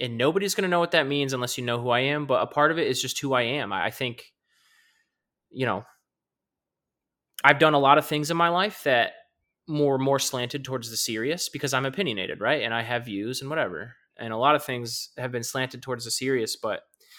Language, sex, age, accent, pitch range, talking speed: English, male, 20-39, American, 120-155 Hz, 235 wpm